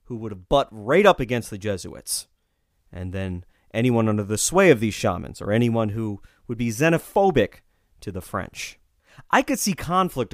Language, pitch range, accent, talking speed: English, 110-165 Hz, American, 175 wpm